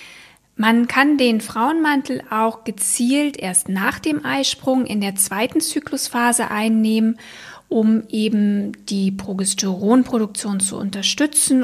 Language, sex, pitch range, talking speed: German, female, 210-270 Hz, 110 wpm